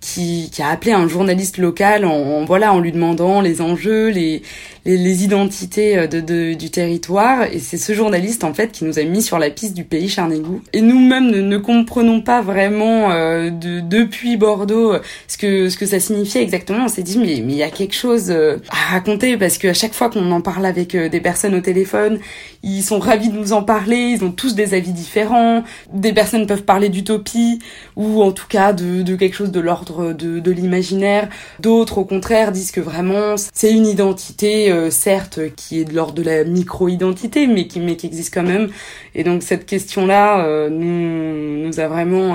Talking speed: 210 wpm